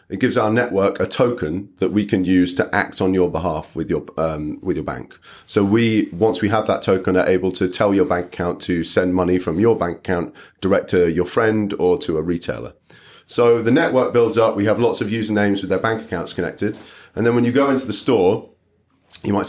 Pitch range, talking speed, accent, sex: 90-110 Hz, 230 wpm, British, male